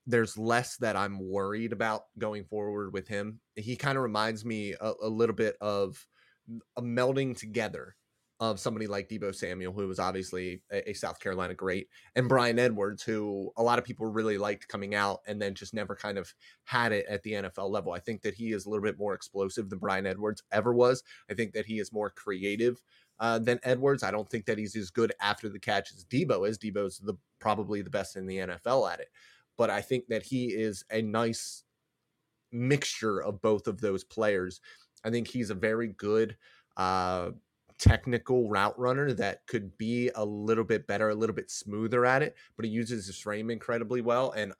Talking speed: 205 wpm